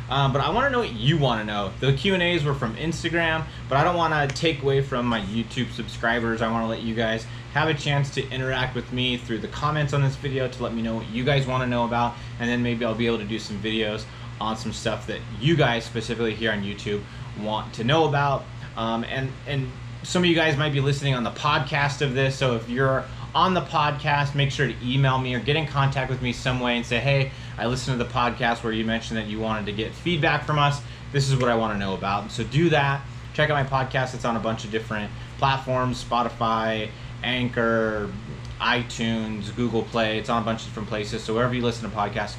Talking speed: 250 wpm